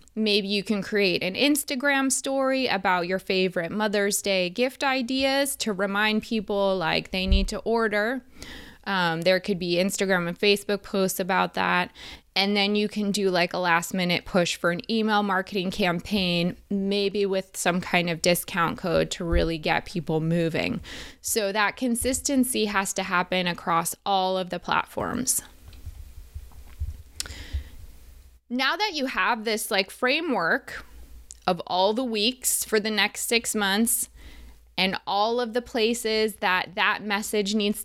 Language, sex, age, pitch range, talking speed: English, female, 20-39, 175-220 Hz, 150 wpm